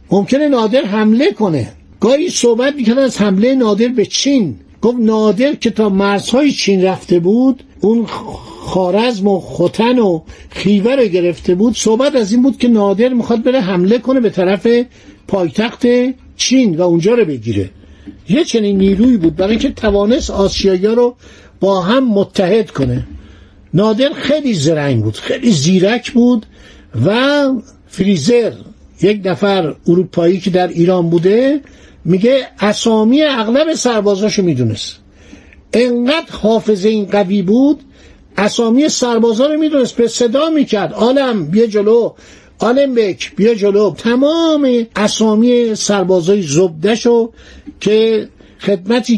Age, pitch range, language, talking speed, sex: 60-79, 185-240 Hz, Persian, 125 wpm, male